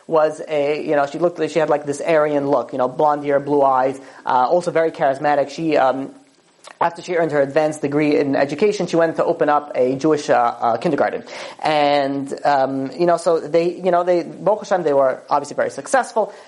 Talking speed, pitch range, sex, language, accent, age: 210 wpm, 145-185 Hz, male, English, American, 30-49